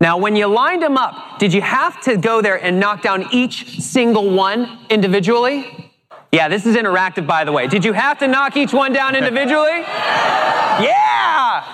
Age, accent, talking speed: 30-49, American, 185 wpm